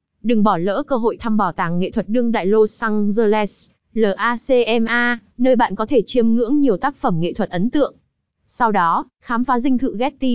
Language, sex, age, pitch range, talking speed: Vietnamese, female, 20-39, 200-240 Hz, 205 wpm